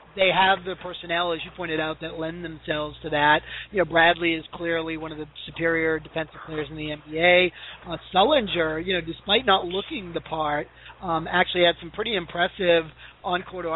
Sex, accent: male, American